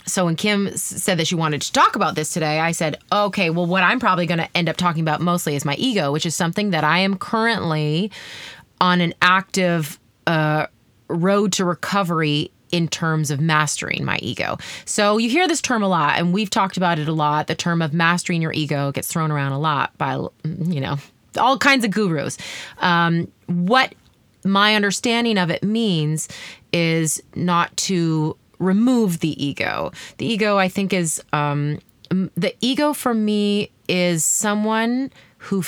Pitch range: 155-195 Hz